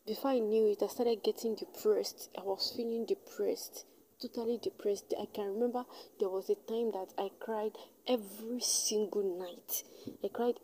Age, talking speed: 20-39, 165 wpm